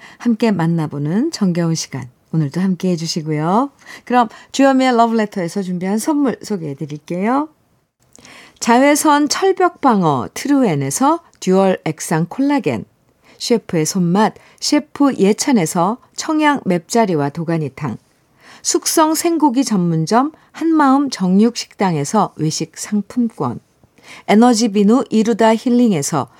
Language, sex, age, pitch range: Korean, female, 50-69, 170-260 Hz